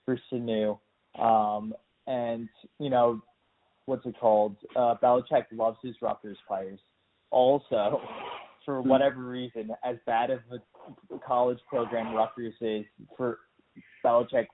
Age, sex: 20-39, male